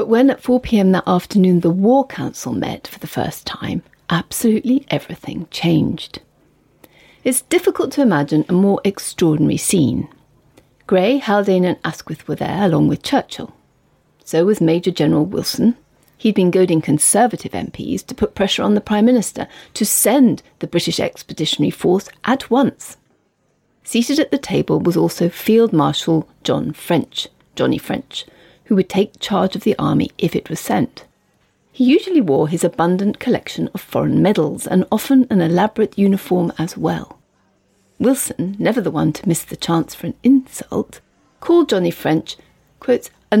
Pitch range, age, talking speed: 180-250 Hz, 40-59, 155 wpm